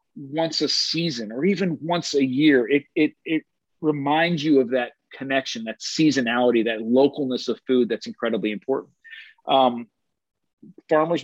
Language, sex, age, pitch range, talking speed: English, male, 40-59, 130-160 Hz, 145 wpm